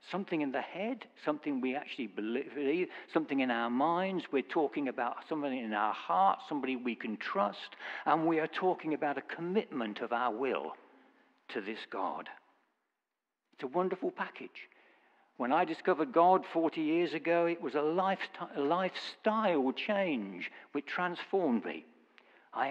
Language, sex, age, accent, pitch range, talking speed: English, male, 60-79, British, 140-190 Hz, 150 wpm